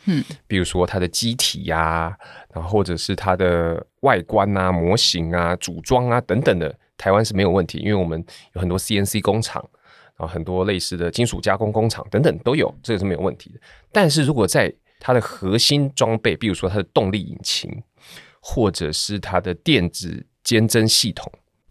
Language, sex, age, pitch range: Chinese, male, 20-39, 90-110 Hz